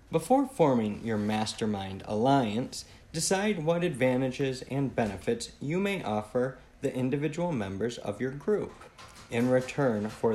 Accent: American